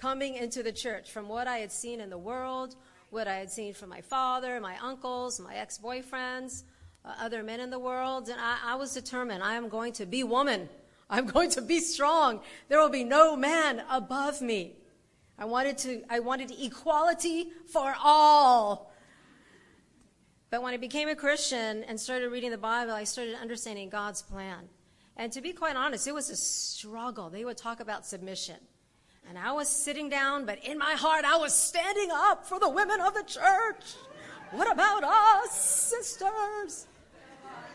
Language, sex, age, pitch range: English, female, 40-59, 225-295 Hz